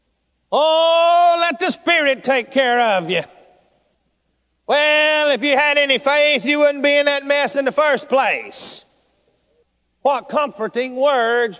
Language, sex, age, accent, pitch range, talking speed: English, male, 50-69, American, 260-320 Hz, 140 wpm